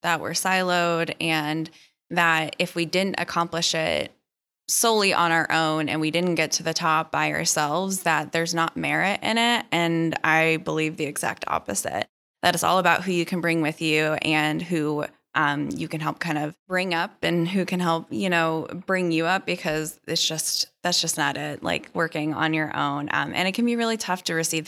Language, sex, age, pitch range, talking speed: English, female, 10-29, 155-175 Hz, 205 wpm